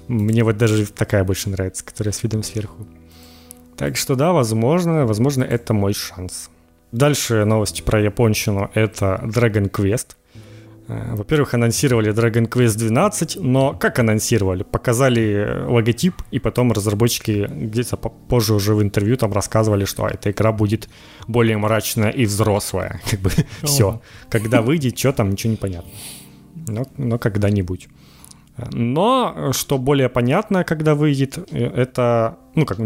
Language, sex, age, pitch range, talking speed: Ukrainian, male, 30-49, 105-130 Hz, 135 wpm